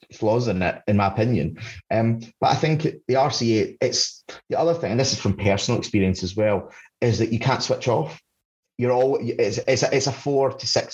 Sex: male